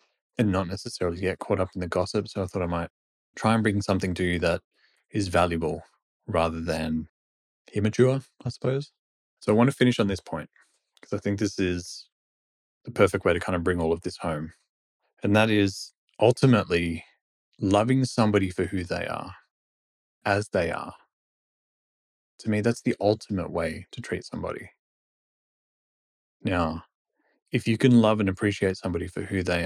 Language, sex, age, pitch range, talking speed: English, male, 20-39, 90-110 Hz, 170 wpm